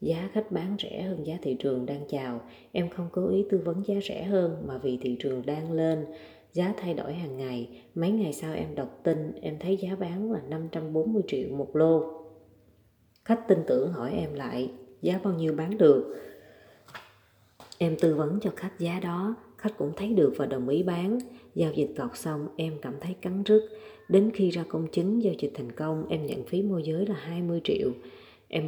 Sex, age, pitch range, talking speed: female, 20-39, 145-195 Hz, 205 wpm